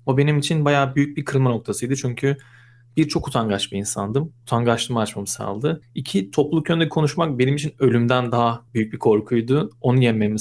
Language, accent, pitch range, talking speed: Turkish, native, 115-140 Hz, 165 wpm